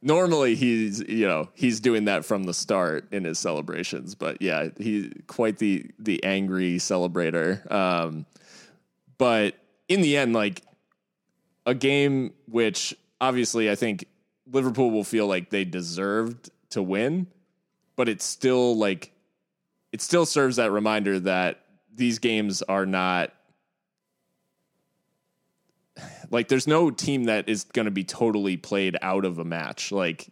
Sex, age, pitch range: male, 20-39, 95-125 Hz